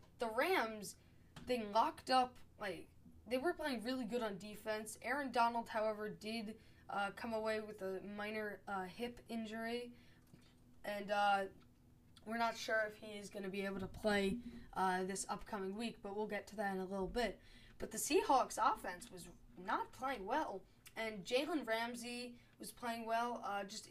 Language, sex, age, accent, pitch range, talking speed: English, female, 10-29, American, 195-245 Hz, 175 wpm